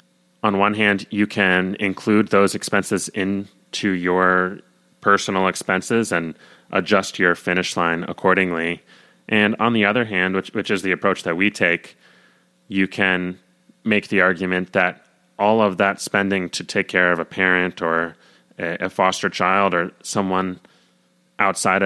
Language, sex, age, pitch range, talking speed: English, male, 20-39, 90-100 Hz, 150 wpm